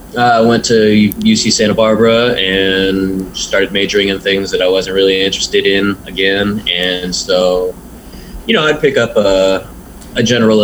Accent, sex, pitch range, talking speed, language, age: American, male, 90-105 Hz, 165 wpm, English, 20-39